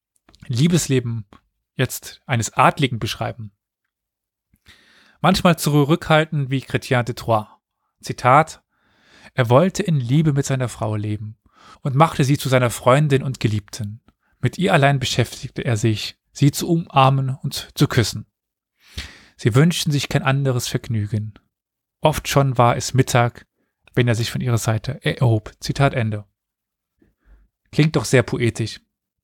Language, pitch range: German, 115-145 Hz